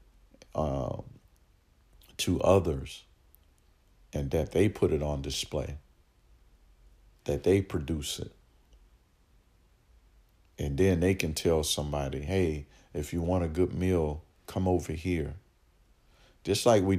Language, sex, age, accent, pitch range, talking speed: English, male, 50-69, American, 75-90 Hz, 115 wpm